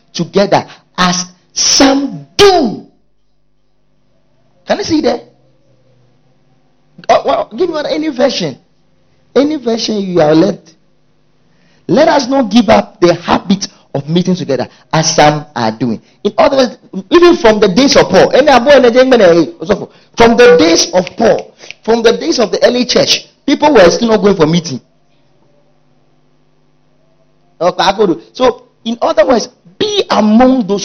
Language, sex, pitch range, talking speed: English, male, 165-260 Hz, 130 wpm